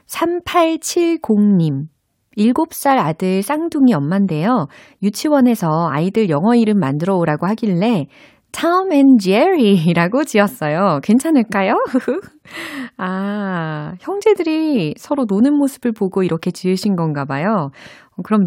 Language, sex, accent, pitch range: Korean, female, native, 155-245 Hz